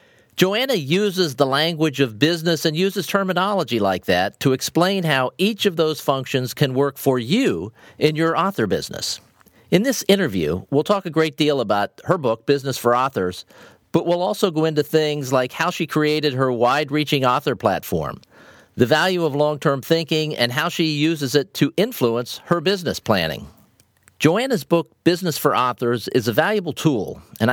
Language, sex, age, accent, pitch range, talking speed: English, male, 50-69, American, 130-165 Hz, 175 wpm